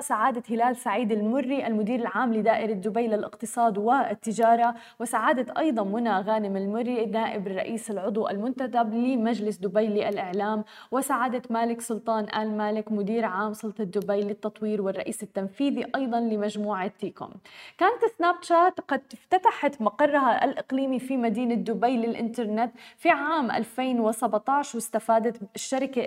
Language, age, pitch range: Arabic, 20-39, 220-270 Hz